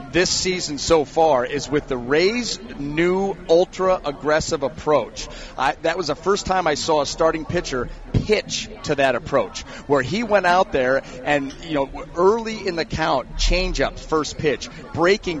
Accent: American